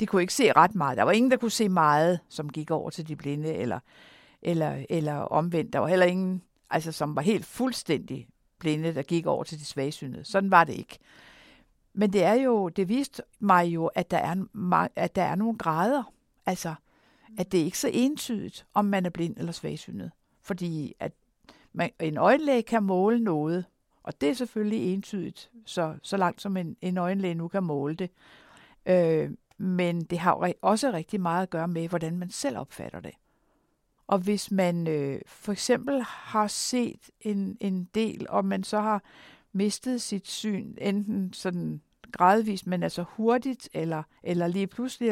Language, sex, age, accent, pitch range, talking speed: Danish, female, 60-79, native, 170-220 Hz, 185 wpm